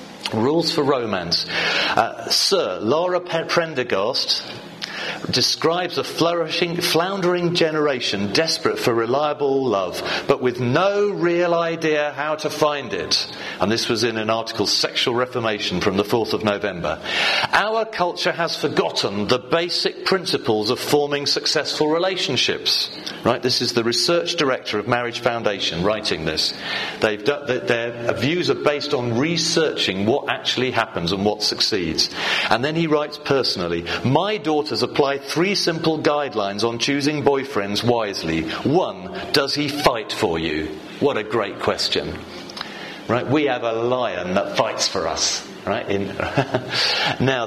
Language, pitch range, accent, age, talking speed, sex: English, 120-165 Hz, British, 40-59, 140 wpm, male